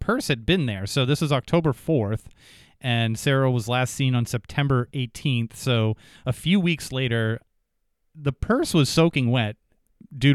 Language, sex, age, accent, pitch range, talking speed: English, male, 30-49, American, 115-150 Hz, 160 wpm